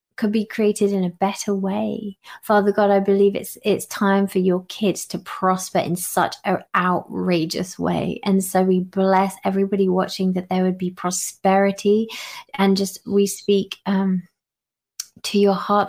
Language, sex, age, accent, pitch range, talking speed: English, female, 20-39, British, 190-215 Hz, 160 wpm